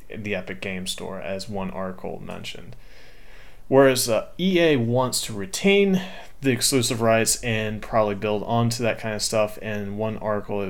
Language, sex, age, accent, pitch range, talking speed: English, male, 30-49, American, 100-120 Hz, 170 wpm